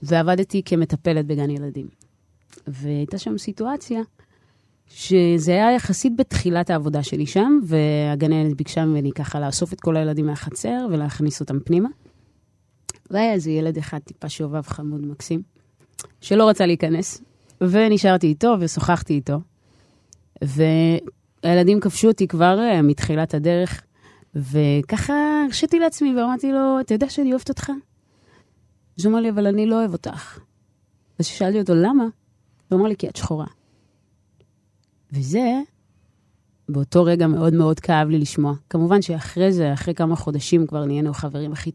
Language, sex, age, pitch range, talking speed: Hebrew, female, 30-49, 140-185 Hz, 135 wpm